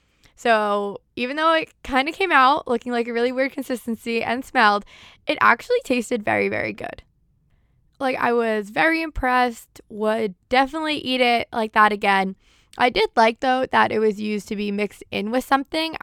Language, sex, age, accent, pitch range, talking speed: English, female, 10-29, American, 205-270 Hz, 180 wpm